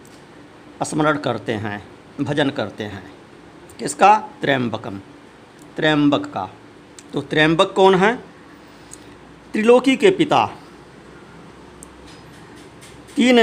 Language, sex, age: Hindi, male, 50-69